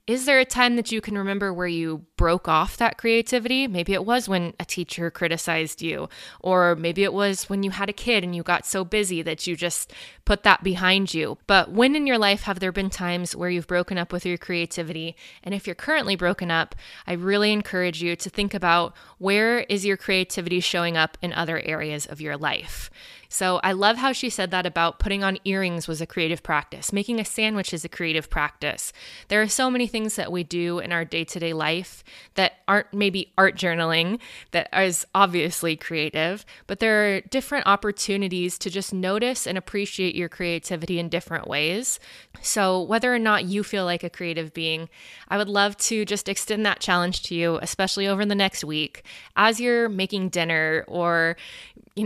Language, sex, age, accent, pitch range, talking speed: English, female, 20-39, American, 170-205 Hz, 200 wpm